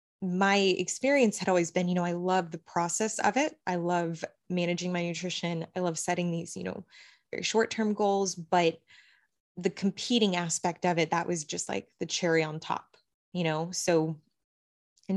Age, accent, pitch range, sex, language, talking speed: 20-39, American, 165-195 Hz, female, English, 180 wpm